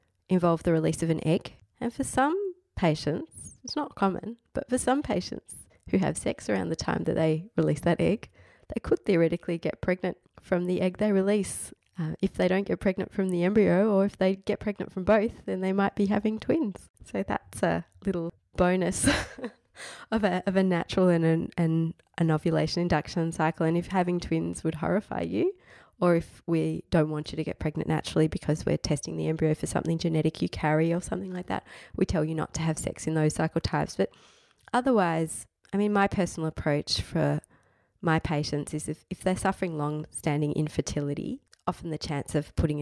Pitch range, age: 155-190 Hz, 20-39